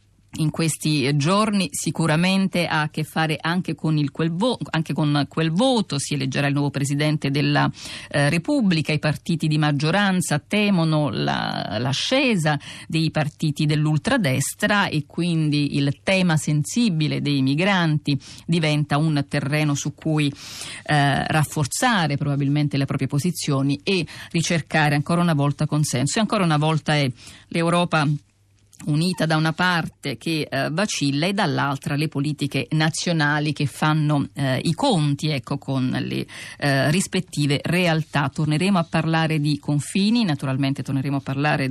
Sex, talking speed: female, 135 wpm